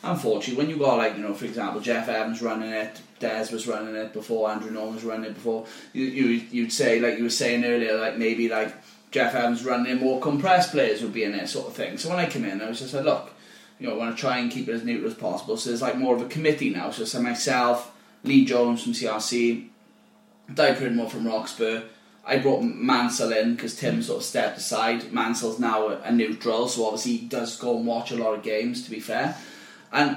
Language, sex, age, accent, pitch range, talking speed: English, male, 10-29, British, 110-135 Hz, 245 wpm